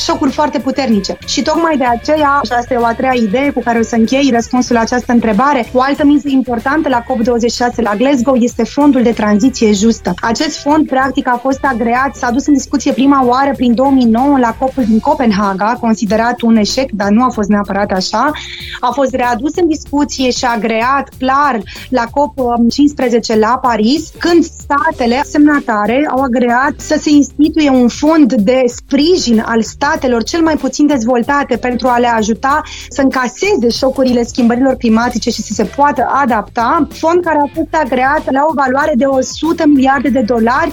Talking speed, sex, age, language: 175 wpm, female, 20-39, Romanian